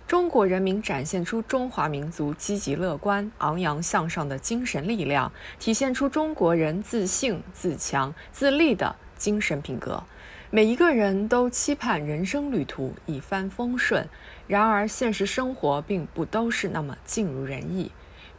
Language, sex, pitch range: Chinese, female, 155-245 Hz